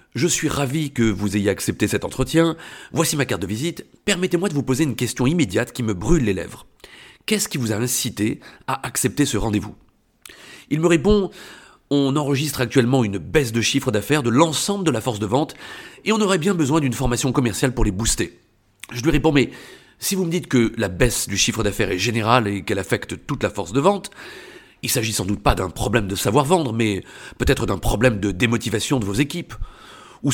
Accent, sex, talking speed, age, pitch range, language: French, male, 215 wpm, 40-59, 115-165 Hz, French